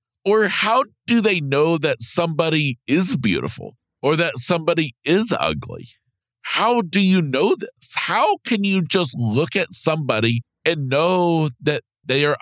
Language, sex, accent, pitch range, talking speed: English, male, American, 120-165 Hz, 150 wpm